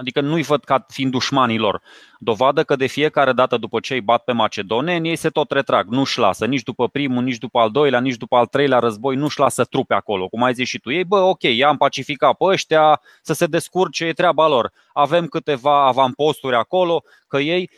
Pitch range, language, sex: 135-165 Hz, Romanian, male